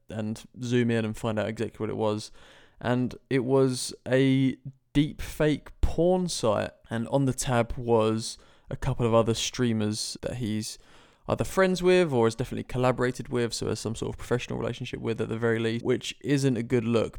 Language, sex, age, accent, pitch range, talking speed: English, male, 20-39, British, 115-135 Hz, 190 wpm